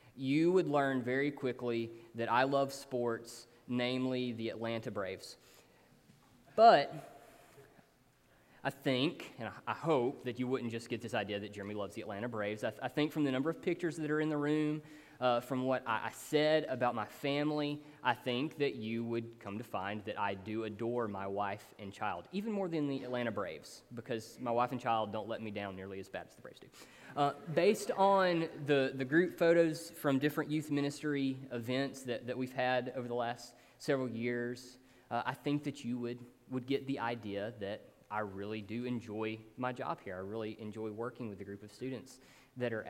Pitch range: 115-145 Hz